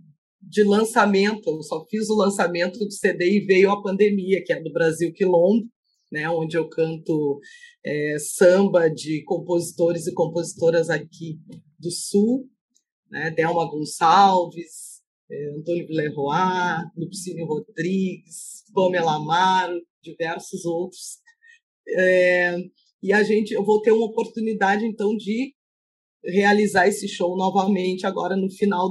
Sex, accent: female, Brazilian